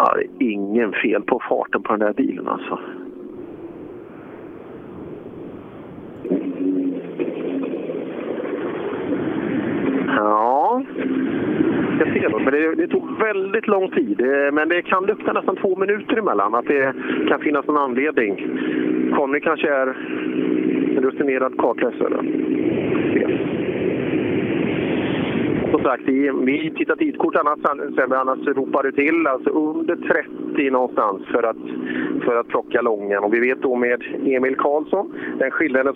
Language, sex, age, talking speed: Swedish, male, 50-69, 115 wpm